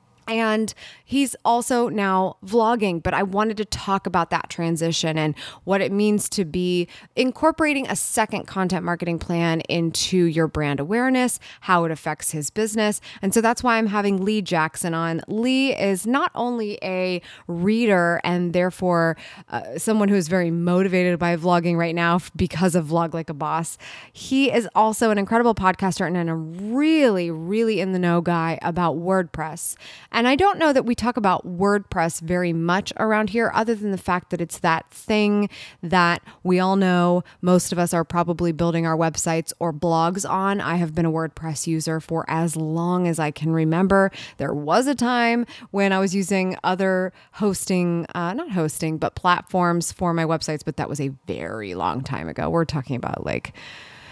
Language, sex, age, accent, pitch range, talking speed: English, female, 20-39, American, 165-205 Hz, 175 wpm